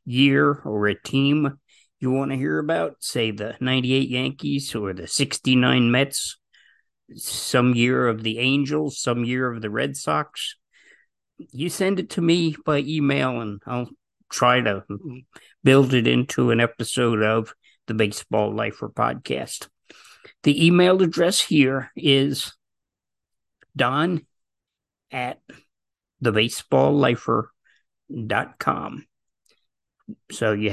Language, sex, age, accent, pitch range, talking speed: English, male, 50-69, American, 110-145 Hz, 115 wpm